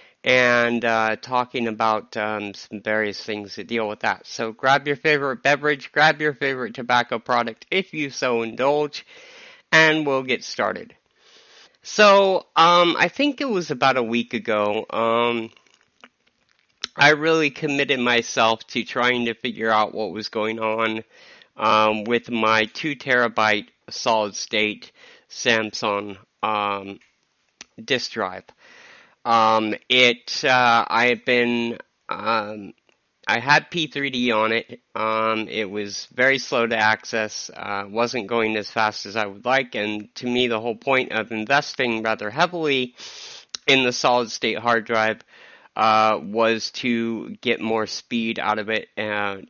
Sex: male